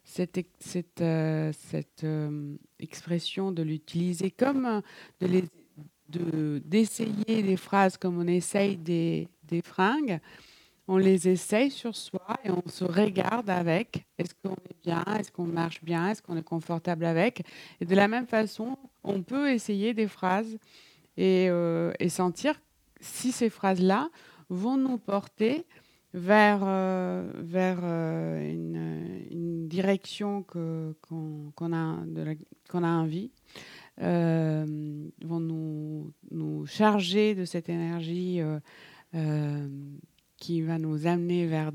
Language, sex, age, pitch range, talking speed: French, female, 60-79, 160-195 Hz, 135 wpm